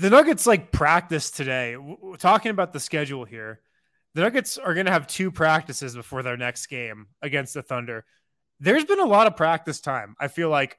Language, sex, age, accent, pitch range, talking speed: English, male, 20-39, American, 125-155 Hz, 195 wpm